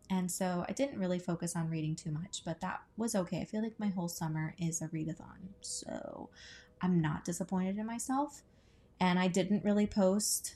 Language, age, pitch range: English, 20-39, 170-200 Hz